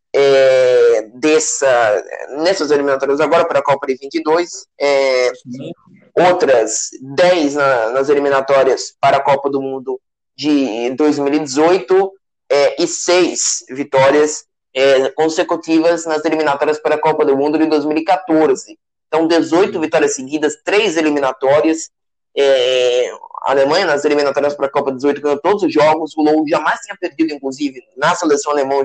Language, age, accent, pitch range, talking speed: Portuguese, 20-39, Brazilian, 140-185 Hz, 140 wpm